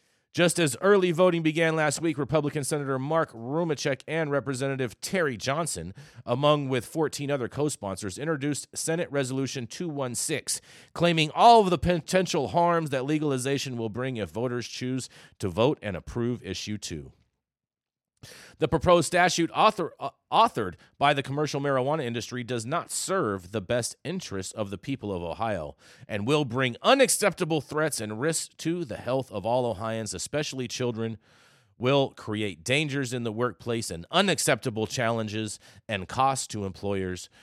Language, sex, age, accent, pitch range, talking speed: English, male, 30-49, American, 105-150 Hz, 150 wpm